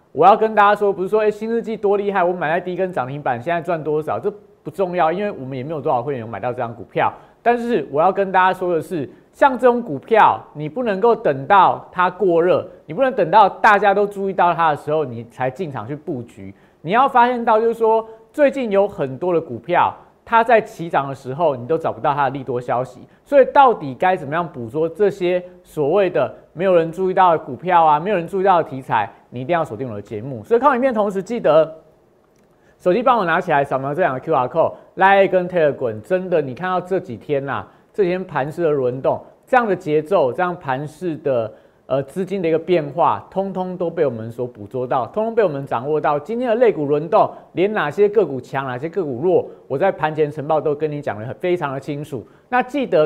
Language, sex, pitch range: Chinese, male, 145-205 Hz